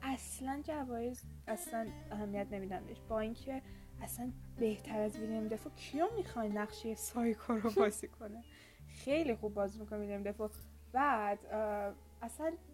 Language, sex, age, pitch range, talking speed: Persian, female, 10-29, 215-255 Hz, 125 wpm